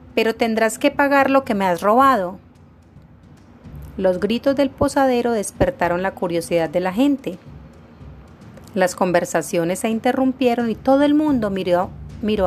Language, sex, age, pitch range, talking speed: Spanish, female, 30-49, 170-250 Hz, 140 wpm